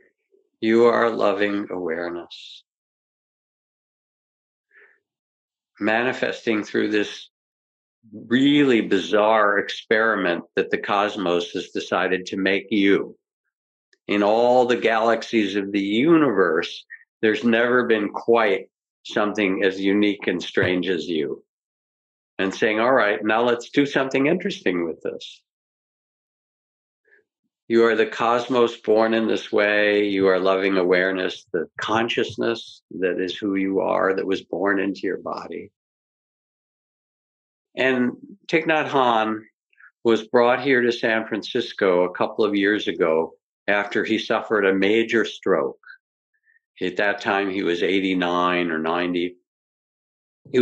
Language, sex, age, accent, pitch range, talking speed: English, male, 60-79, American, 95-125 Hz, 120 wpm